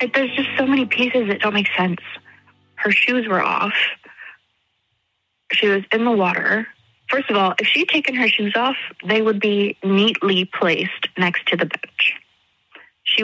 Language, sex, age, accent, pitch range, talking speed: English, female, 30-49, American, 195-250 Hz, 170 wpm